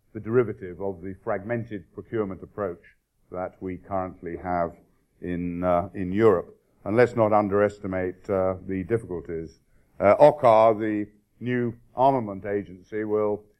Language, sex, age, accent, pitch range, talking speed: English, male, 50-69, British, 95-115 Hz, 130 wpm